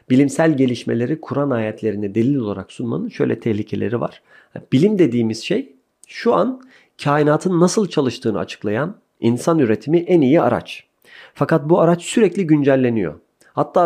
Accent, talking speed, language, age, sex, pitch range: native, 130 wpm, Turkish, 40-59, male, 110-150 Hz